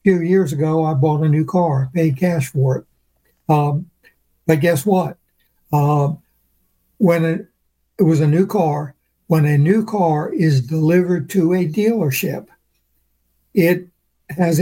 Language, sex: English, male